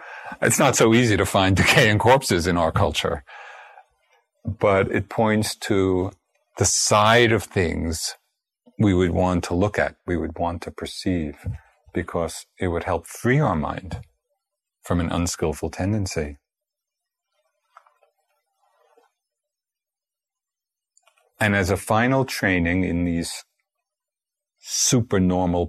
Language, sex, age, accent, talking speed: English, male, 40-59, American, 115 wpm